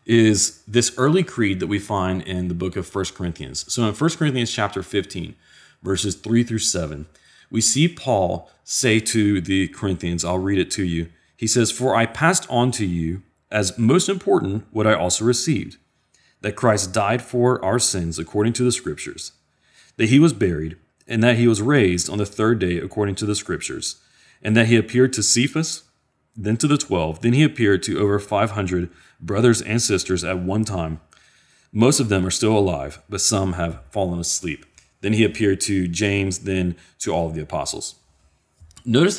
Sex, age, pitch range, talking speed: male, 30-49, 90-120 Hz, 185 wpm